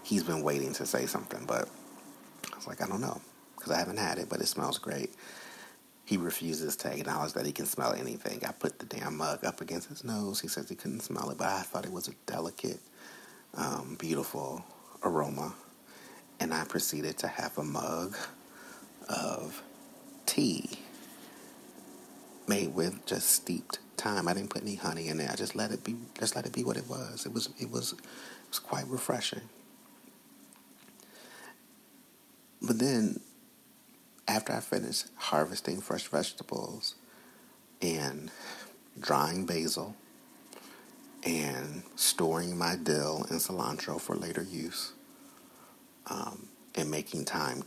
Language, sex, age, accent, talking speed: English, male, 30-49, American, 150 wpm